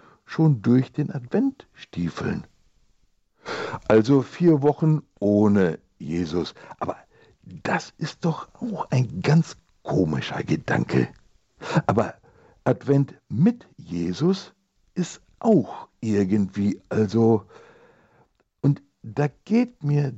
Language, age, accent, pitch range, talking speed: German, 60-79, German, 130-190 Hz, 90 wpm